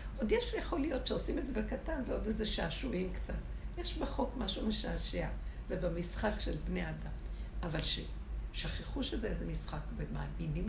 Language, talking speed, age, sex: Hebrew, 145 wpm, 60-79, female